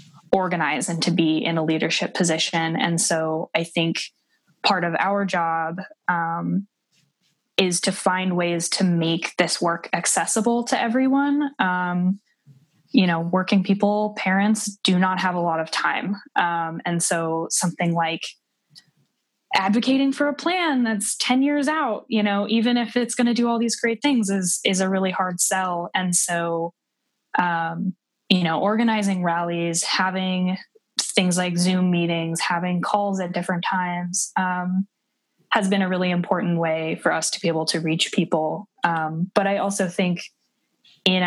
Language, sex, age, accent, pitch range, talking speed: English, female, 10-29, American, 170-205 Hz, 160 wpm